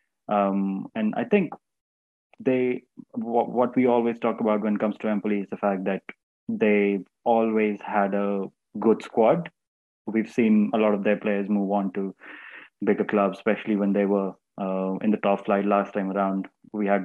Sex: male